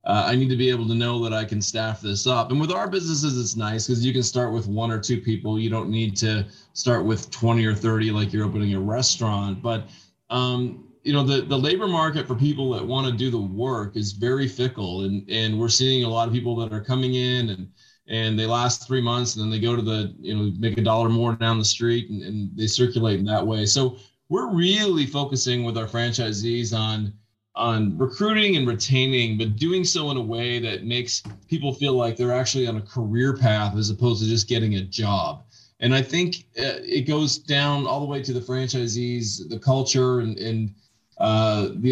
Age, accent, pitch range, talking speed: 30-49, American, 110-130 Hz, 225 wpm